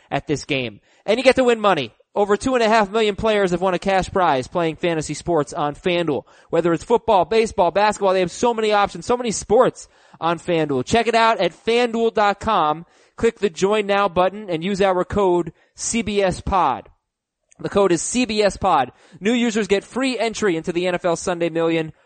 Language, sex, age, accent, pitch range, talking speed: English, male, 20-39, American, 165-220 Hz, 195 wpm